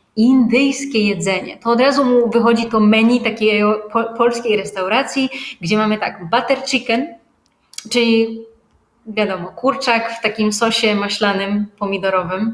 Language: Polish